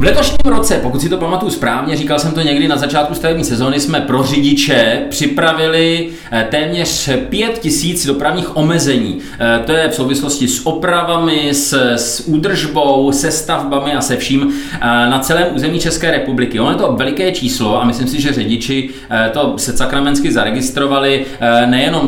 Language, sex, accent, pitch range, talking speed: Czech, male, native, 120-155 Hz, 160 wpm